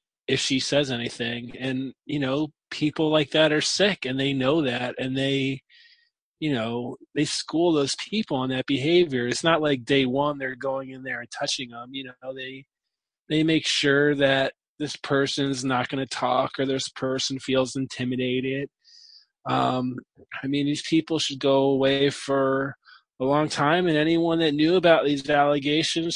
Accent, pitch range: American, 130-155 Hz